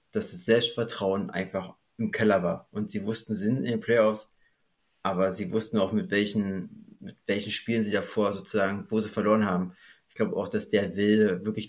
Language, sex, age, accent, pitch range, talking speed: German, male, 30-49, German, 105-120 Hz, 195 wpm